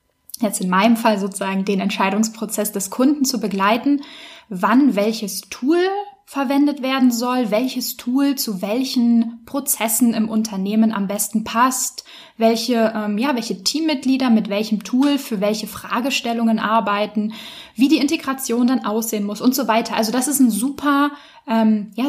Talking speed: 150 wpm